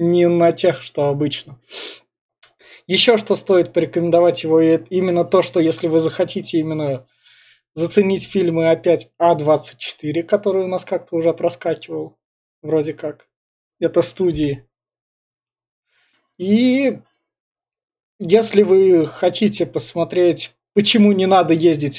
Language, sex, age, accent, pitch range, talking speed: Russian, male, 20-39, native, 160-190 Hz, 115 wpm